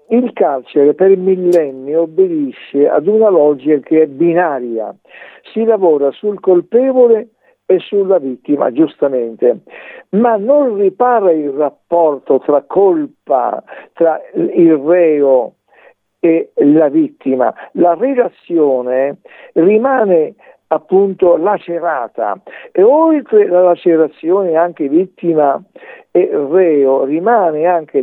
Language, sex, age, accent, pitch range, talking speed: Italian, male, 60-79, native, 150-245 Hz, 100 wpm